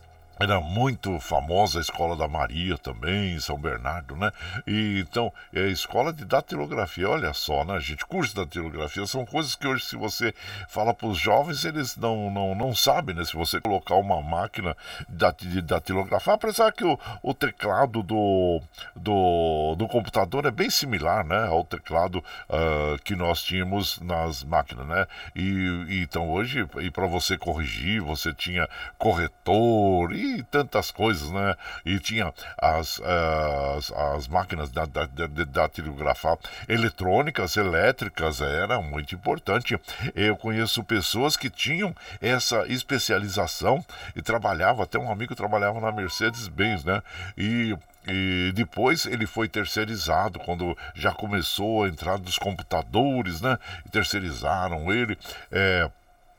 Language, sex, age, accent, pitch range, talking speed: Portuguese, male, 60-79, Brazilian, 85-110 Hz, 145 wpm